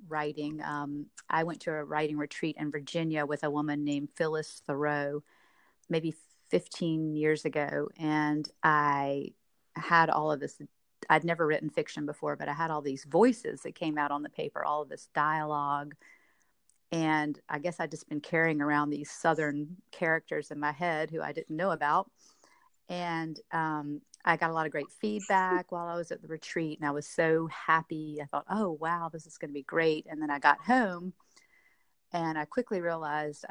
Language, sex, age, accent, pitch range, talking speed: English, female, 40-59, American, 145-165 Hz, 190 wpm